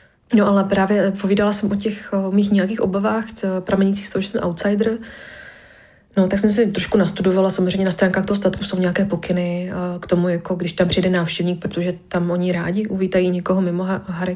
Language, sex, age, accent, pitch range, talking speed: Czech, female, 20-39, native, 175-190 Hz, 200 wpm